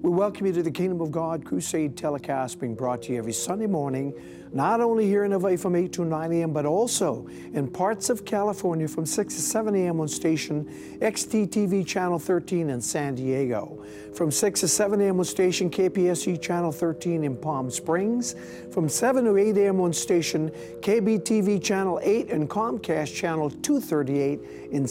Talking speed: 180 wpm